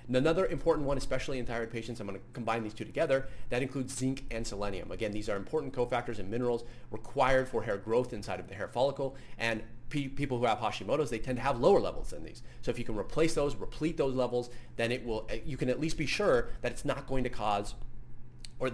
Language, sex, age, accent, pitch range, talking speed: English, male, 30-49, American, 110-130 Hz, 235 wpm